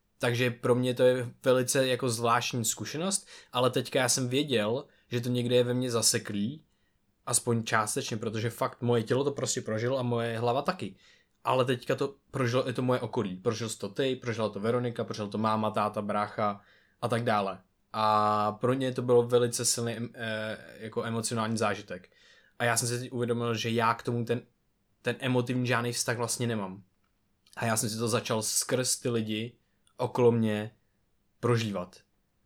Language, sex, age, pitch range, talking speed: Czech, male, 20-39, 110-125 Hz, 175 wpm